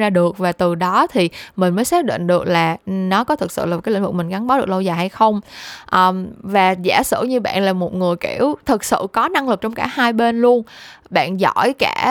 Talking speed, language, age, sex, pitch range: 250 wpm, Vietnamese, 10-29, female, 185-250 Hz